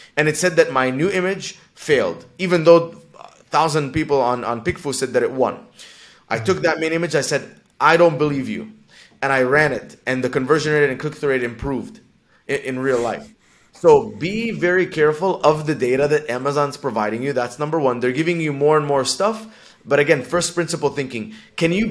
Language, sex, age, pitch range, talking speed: English, male, 20-39, 135-175 Hz, 210 wpm